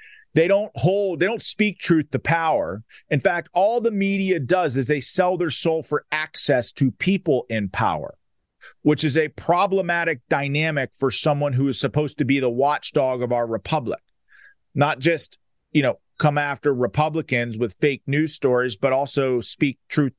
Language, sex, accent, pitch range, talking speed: English, male, American, 125-155 Hz, 170 wpm